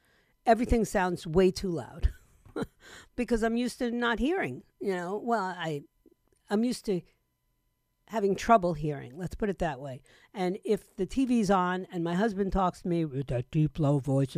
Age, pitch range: 50-69, 170-230 Hz